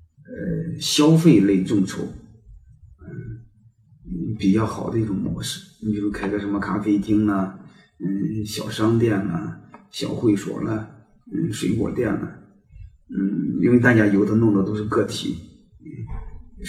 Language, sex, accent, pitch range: Chinese, male, native, 100-115 Hz